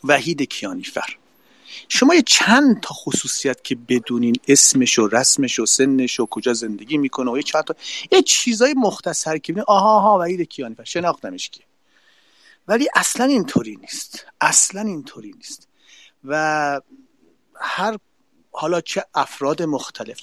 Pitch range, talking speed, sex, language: 135-225 Hz, 135 wpm, male, Persian